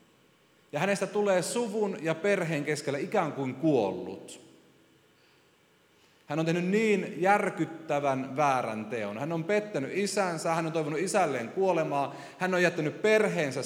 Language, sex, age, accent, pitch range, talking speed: Finnish, male, 30-49, native, 140-200 Hz, 130 wpm